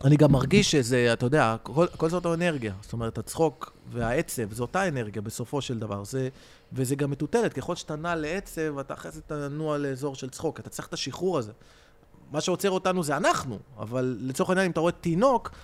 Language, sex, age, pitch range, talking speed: Hebrew, male, 30-49, 130-185 Hz, 200 wpm